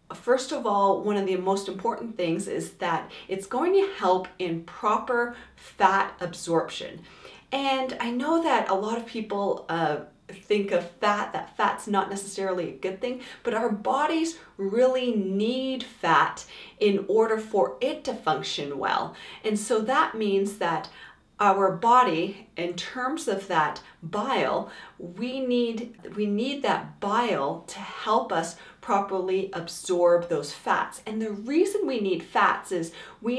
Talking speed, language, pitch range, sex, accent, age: 150 wpm, English, 180-235 Hz, female, American, 40-59